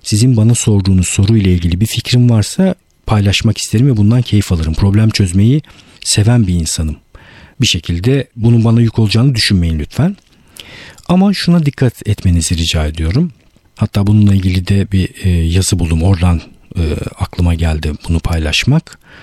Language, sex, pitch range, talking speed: Turkish, male, 90-120 Hz, 145 wpm